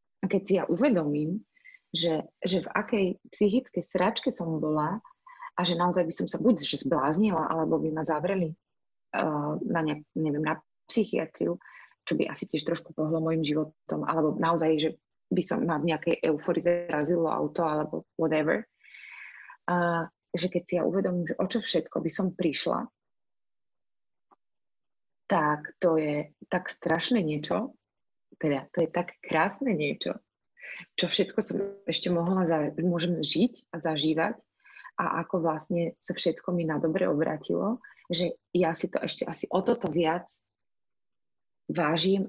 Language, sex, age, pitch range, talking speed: Slovak, female, 30-49, 160-185 Hz, 150 wpm